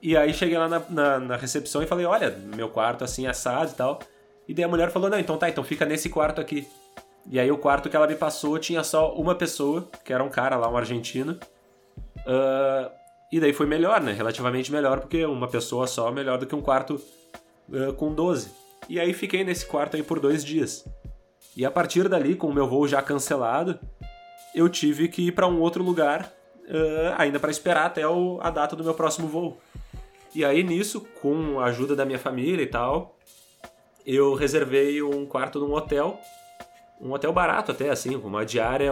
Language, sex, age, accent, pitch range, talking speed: Portuguese, male, 20-39, Brazilian, 135-170 Hz, 205 wpm